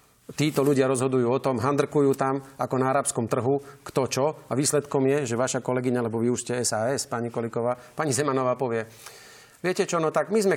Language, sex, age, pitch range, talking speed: Slovak, male, 40-59, 125-150 Hz, 200 wpm